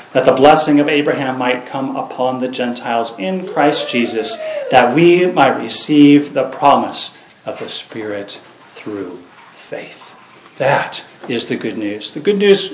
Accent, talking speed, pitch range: American, 150 wpm, 125-170 Hz